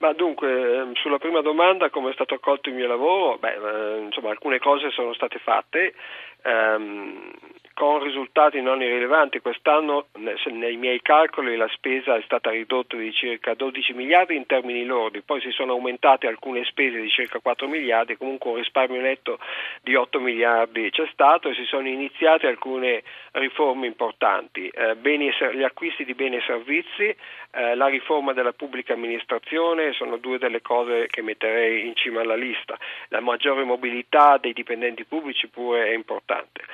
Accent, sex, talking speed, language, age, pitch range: native, male, 165 wpm, Italian, 40-59, 120-155 Hz